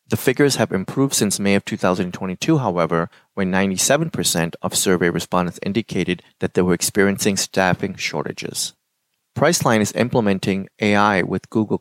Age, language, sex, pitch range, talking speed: 30-49, English, male, 95-115 Hz, 135 wpm